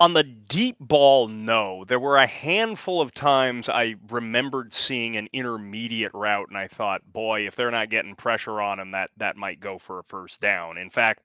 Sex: male